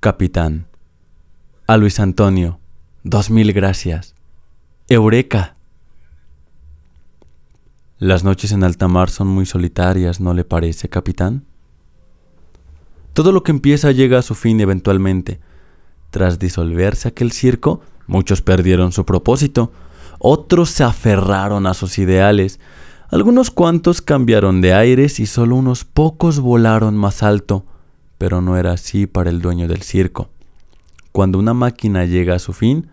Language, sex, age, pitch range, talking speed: Spanish, male, 20-39, 85-125 Hz, 130 wpm